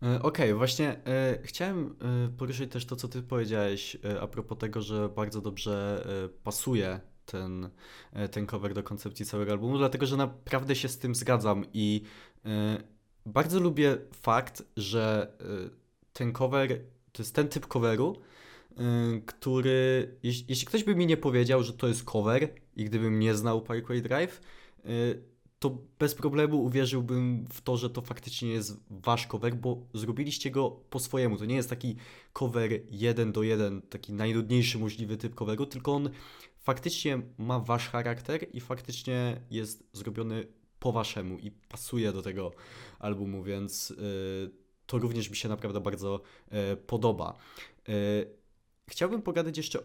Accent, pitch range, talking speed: native, 105-130 Hz, 140 wpm